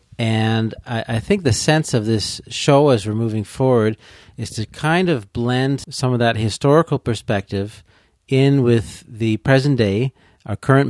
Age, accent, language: 40-59, American, English